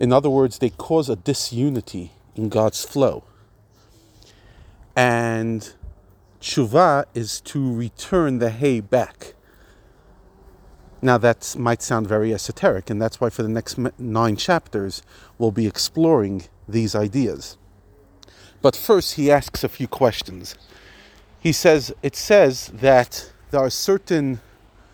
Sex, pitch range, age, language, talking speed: male, 100-125 Hz, 40-59, English, 125 wpm